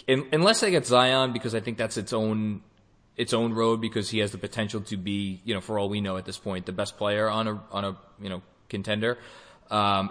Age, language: 20-39, English